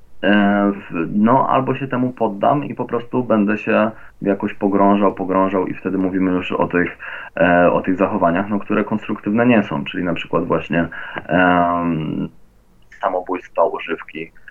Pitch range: 95-110 Hz